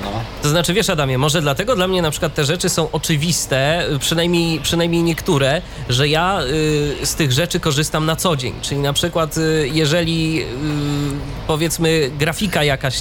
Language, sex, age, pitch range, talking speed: Polish, male, 20-39, 125-165 Hz, 150 wpm